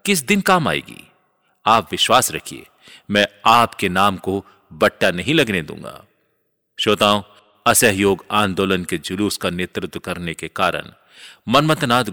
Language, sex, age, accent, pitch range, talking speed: Hindi, male, 40-59, native, 100-130 Hz, 130 wpm